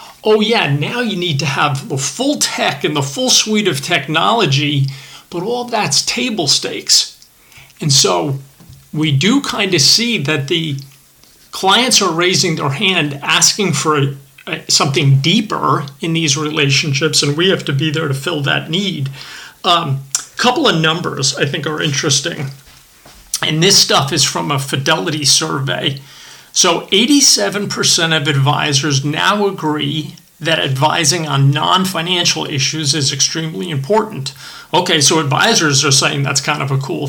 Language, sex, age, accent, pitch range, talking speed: English, male, 40-59, American, 140-180 Hz, 150 wpm